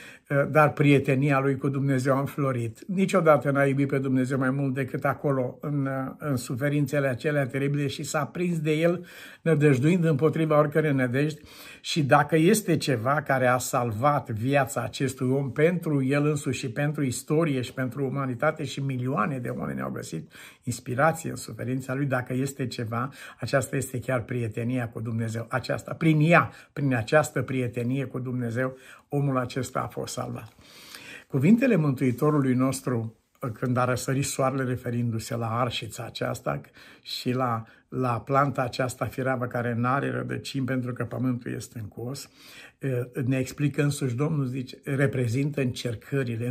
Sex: male